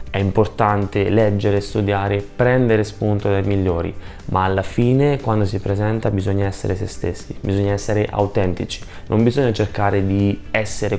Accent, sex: native, male